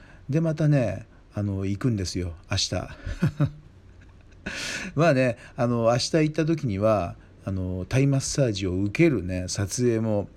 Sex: male